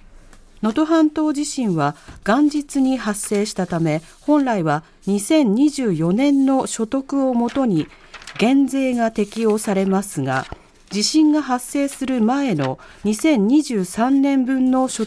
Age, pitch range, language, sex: 40-59, 175-265 Hz, Japanese, female